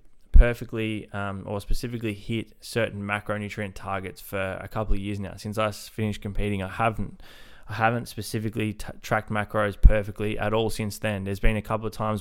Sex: male